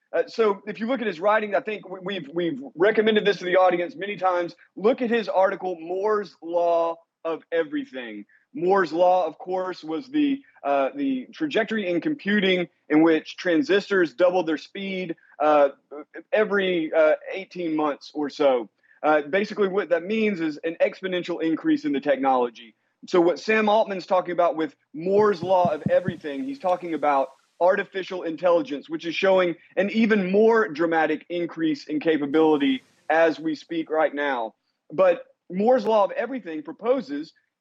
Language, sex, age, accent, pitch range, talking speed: English, male, 30-49, American, 160-210 Hz, 160 wpm